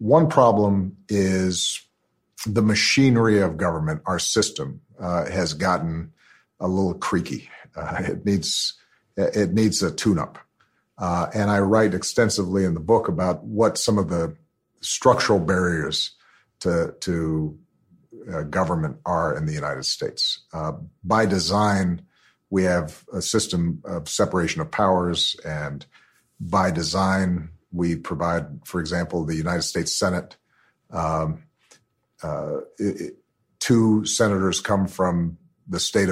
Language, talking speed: German, 125 wpm